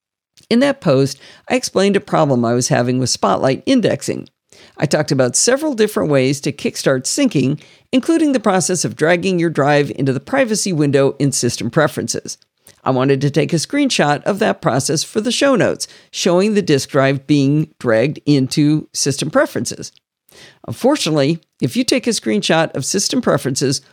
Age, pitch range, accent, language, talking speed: 50-69, 135-215 Hz, American, English, 170 wpm